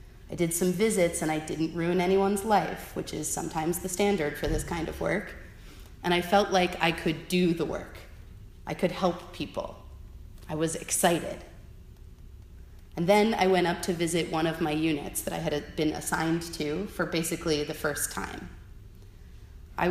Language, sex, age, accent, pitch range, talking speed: English, female, 30-49, American, 150-185 Hz, 180 wpm